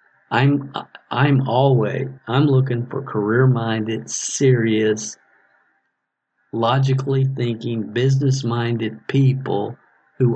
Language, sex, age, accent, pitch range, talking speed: English, male, 50-69, American, 110-130 Hz, 85 wpm